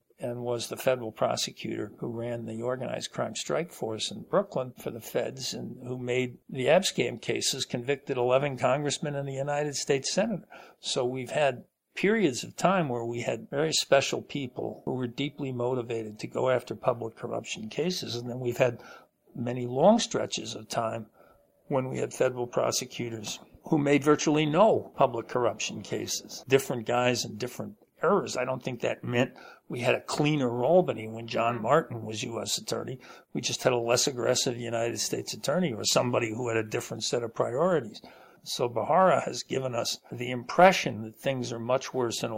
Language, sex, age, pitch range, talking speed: English, male, 60-79, 115-135 Hz, 180 wpm